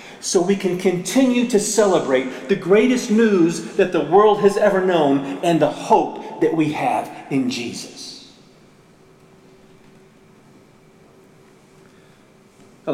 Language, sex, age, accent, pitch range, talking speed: English, male, 40-59, American, 145-220 Hz, 110 wpm